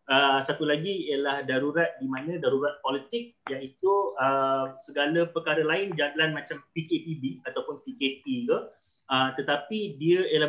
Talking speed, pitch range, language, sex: 135 wpm, 135-170 Hz, Malay, male